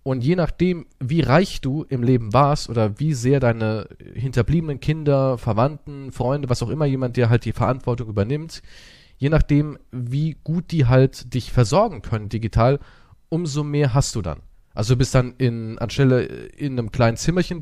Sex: male